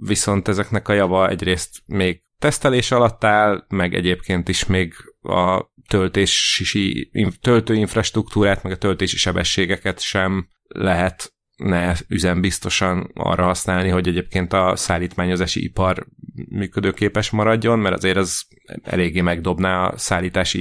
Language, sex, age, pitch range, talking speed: Hungarian, male, 30-49, 90-110 Hz, 110 wpm